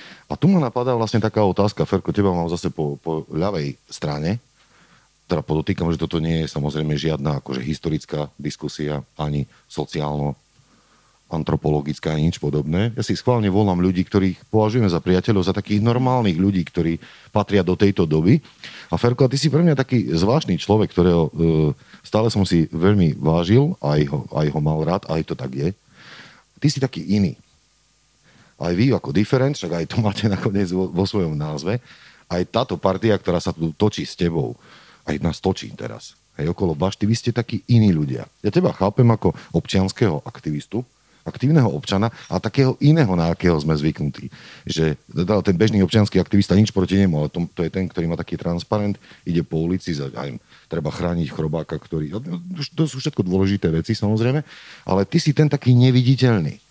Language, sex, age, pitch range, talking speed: Slovak, male, 40-59, 80-110 Hz, 180 wpm